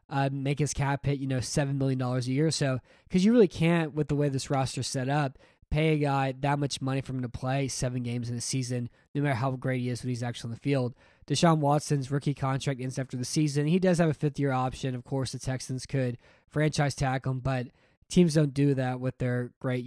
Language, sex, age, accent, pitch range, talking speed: English, male, 10-29, American, 130-150 Hz, 250 wpm